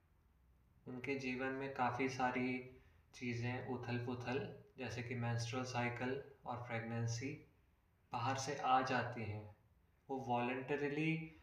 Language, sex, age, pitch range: Hindi, male, 20-39, 115-135 Hz